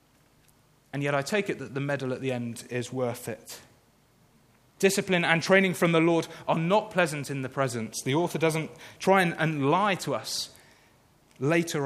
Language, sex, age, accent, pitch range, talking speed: English, male, 30-49, British, 130-160 Hz, 175 wpm